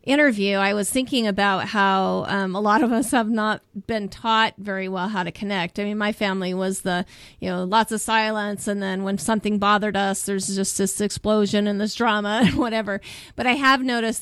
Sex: female